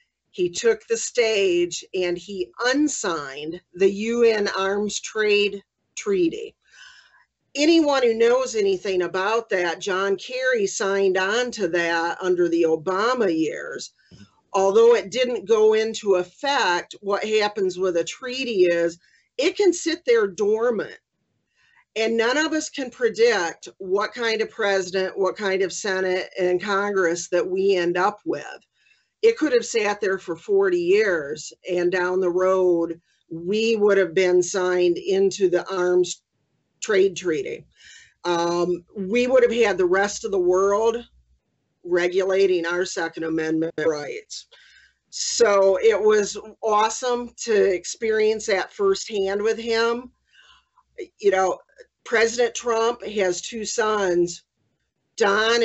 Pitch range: 185-310 Hz